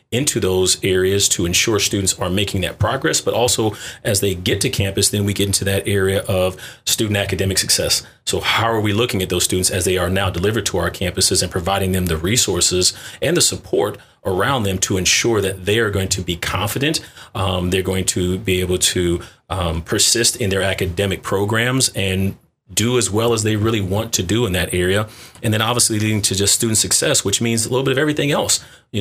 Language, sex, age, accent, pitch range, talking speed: English, male, 30-49, American, 95-110 Hz, 215 wpm